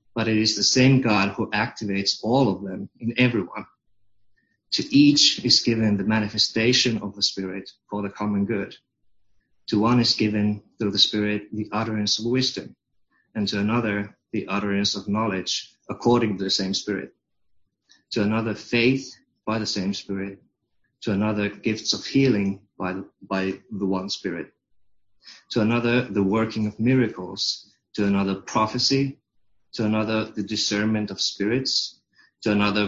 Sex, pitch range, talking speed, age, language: male, 100-110 Hz, 150 wpm, 30-49, English